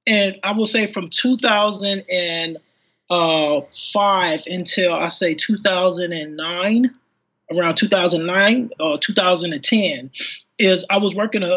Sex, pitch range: male, 175-210 Hz